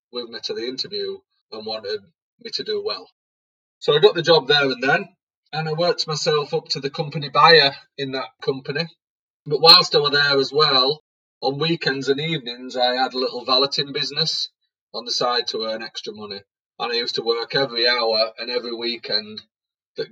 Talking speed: 195 wpm